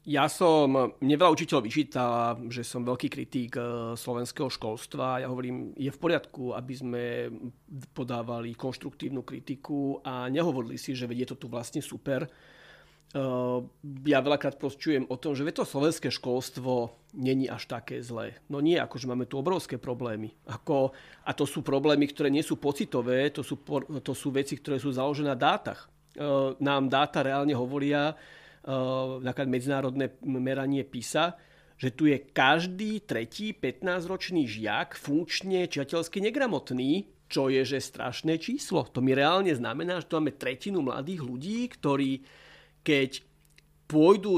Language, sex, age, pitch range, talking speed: Slovak, male, 40-59, 125-150 Hz, 140 wpm